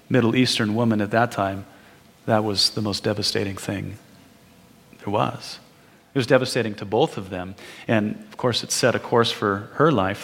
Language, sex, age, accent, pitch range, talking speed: English, male, 40-59, American, 110-155 Hz, 180 wpm